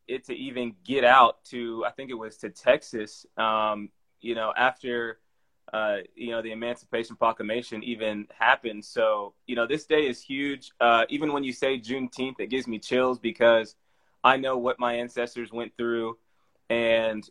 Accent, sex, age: American, male, 20-39